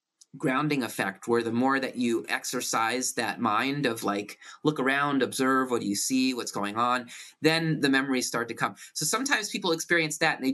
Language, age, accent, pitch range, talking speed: English, 20-39, American, 135-195 Hz, 200 wpm